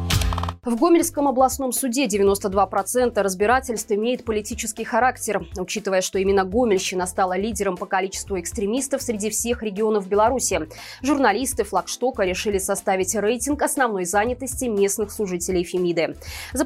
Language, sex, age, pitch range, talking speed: Russian, female, 20-39, 195-260 Hz, 120 wpm